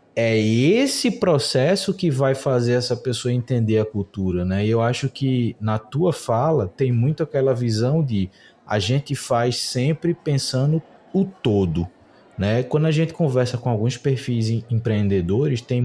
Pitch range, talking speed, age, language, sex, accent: 115-160 Hz, 155 wpm, 20-39, Portuguese, male, Brazilian